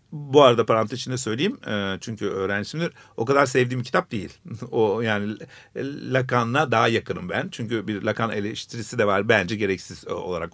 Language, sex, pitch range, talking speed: Turkish, male, 115-135 Hz, 155 wpm